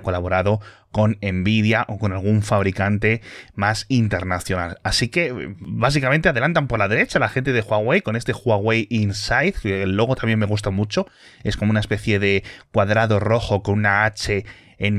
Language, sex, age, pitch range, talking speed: Spanish, male, 30-49, 100-140 Hz, 165 wpm